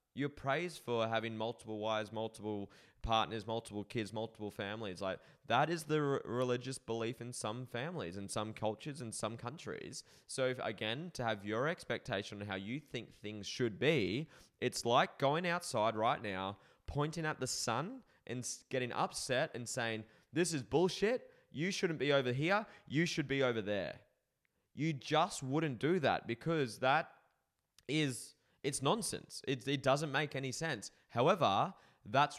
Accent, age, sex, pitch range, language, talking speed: Australian, 20-39, male, 115-145 Hz, English, 165 wpm